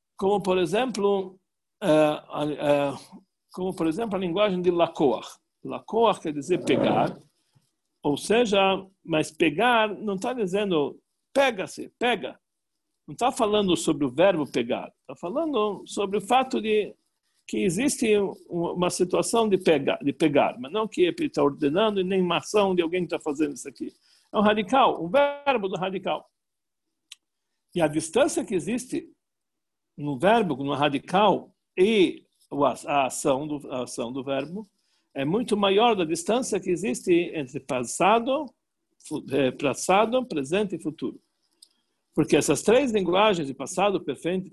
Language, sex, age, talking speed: Portuguese, male, 60-79, 135 wpm